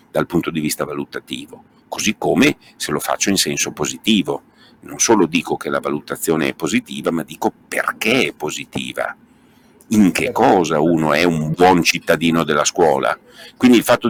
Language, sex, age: Italian, male, 50-69